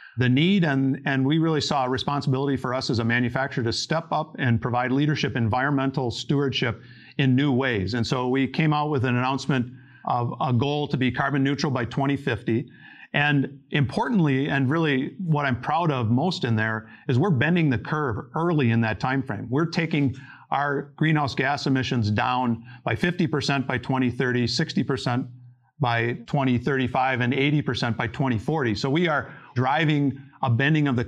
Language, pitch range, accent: English, 125-150 Hz, American